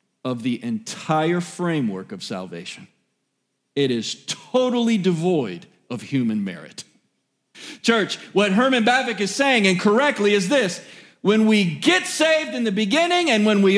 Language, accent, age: English, American, 40-59